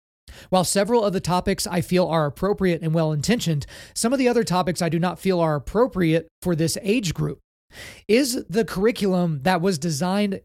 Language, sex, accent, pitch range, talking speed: English, male, American, 165-205 Hz, 185 wpm